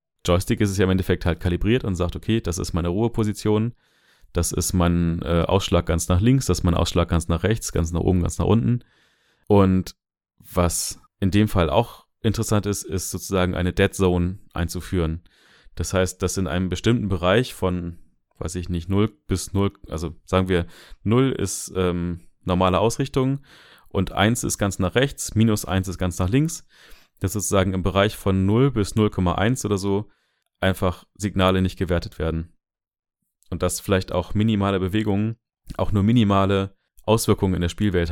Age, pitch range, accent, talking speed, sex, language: 30-49, 90-105 Hz, German, 175 wpm, male, German